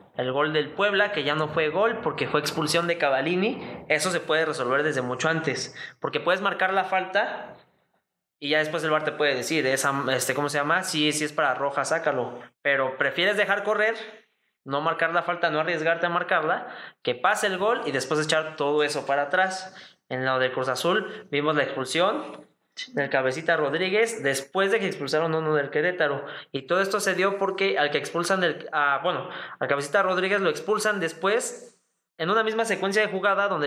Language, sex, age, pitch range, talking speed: Spanish, male, 20-39, 145-190 Hz, 200 wpm